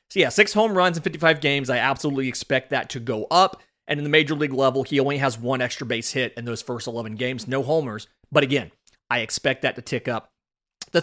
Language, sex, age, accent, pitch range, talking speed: English, male, 30-49, American, 125-160 Hz, 240 wpm